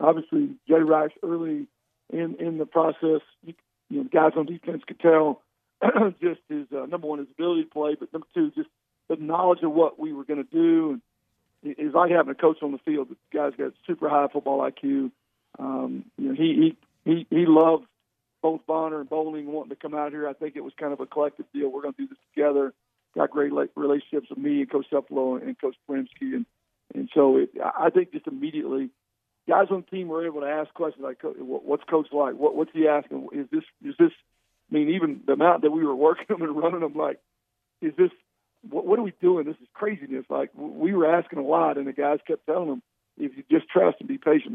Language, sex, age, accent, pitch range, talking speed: English, male, 50-69, American, 145-235 Hz, 230 wpm